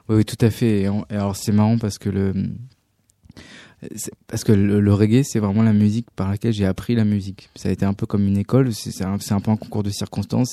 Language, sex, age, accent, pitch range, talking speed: French, male, 20-39, French, 95-110 Hz, 275 wpm